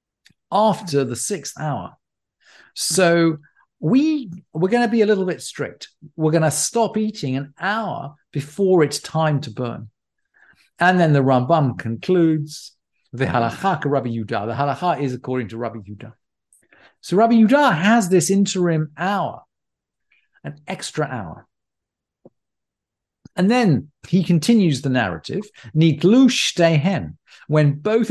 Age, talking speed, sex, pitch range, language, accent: 50-69, 125 wpm, male, 135-195 Hz, English, British